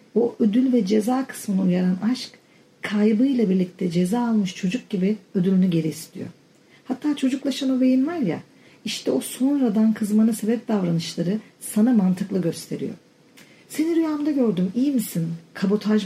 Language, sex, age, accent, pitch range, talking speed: Turkish, female, 50-69, native, 190-245 Hz, 140 wpm